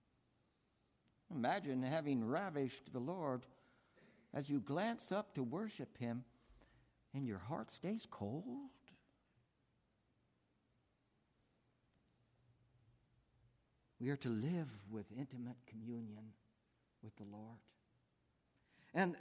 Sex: male